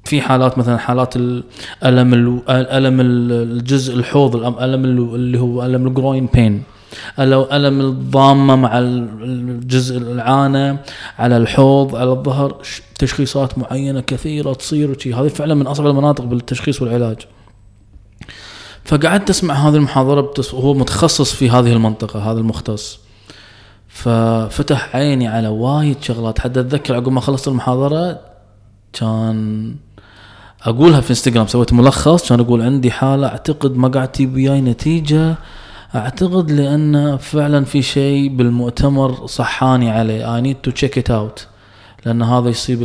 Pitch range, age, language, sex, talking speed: 120-140 Hz, 20-39, Arabic, male, 125 wpm